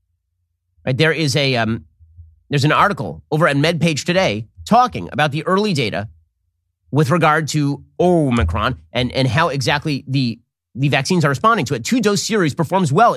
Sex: male